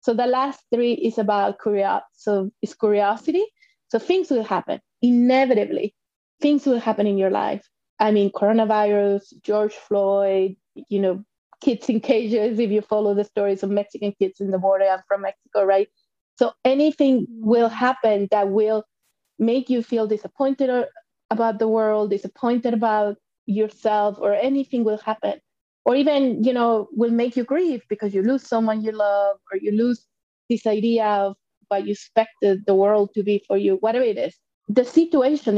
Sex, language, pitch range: female, English, 200-245 Hz